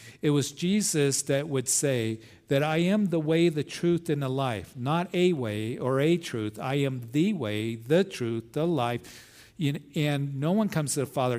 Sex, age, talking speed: male, 50-69, 195 wpm